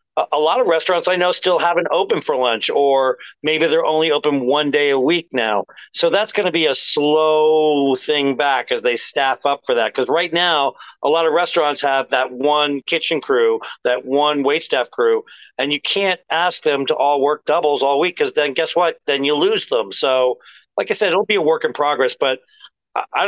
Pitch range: 135-175 Hz